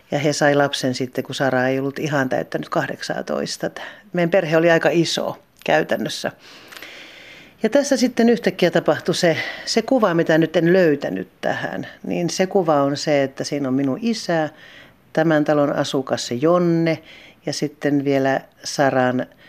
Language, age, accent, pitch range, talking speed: Finnish, 40-59, native, 140-170 Hz, 150 wpm